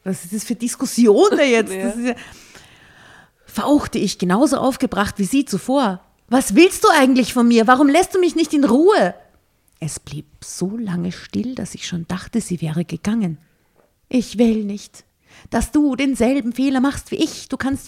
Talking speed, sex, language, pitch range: 170 wpm, female, German, 185-265 Hz